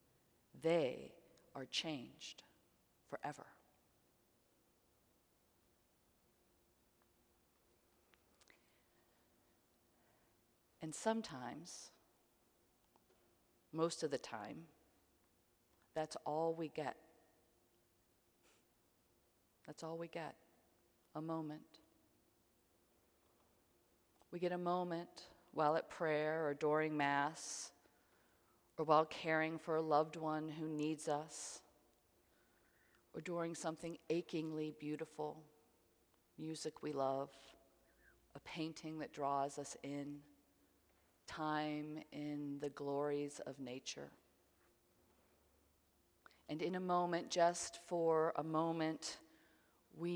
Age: 40-59